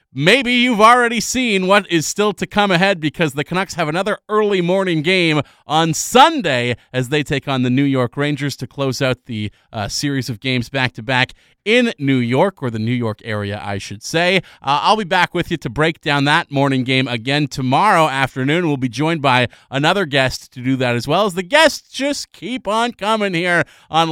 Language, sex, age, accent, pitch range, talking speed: English, male, 30-49, American, 130-180 Hz, 205 wpm